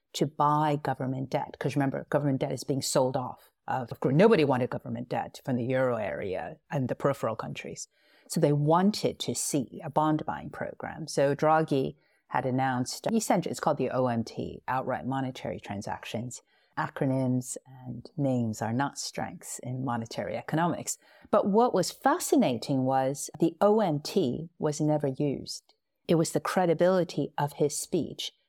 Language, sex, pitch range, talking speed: English, female, 130-170 Hz, 155 wpm